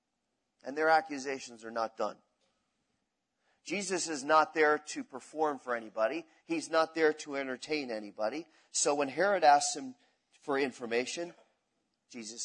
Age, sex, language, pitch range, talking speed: 40-59, male, English, 120-155 Hz, 135 wpm